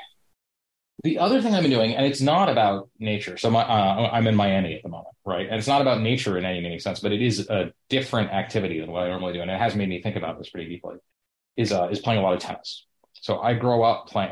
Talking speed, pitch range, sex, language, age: 270 wpm, 90-120 Hz, male, English, 30-49